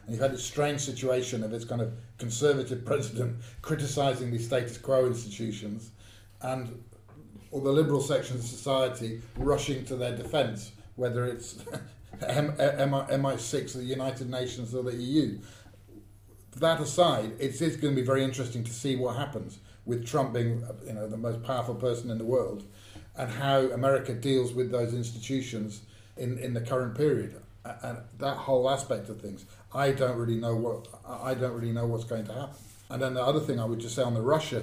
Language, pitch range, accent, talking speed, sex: English, 110-130 Hz, British, 185 wpm, male